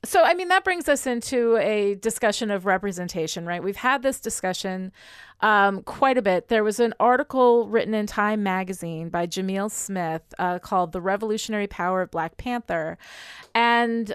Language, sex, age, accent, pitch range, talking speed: English, female, 30-49, American, 185-245 Hz, 170 wpm